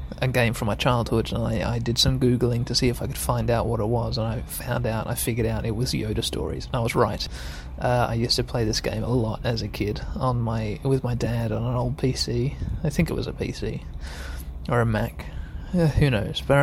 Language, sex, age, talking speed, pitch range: English, male, 20-39, 255 wpm, 80-135 Hz